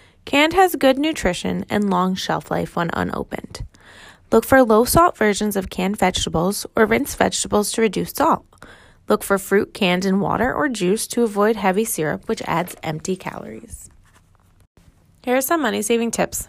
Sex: female